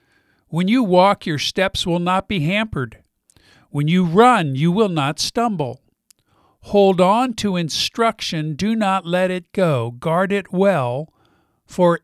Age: 50-69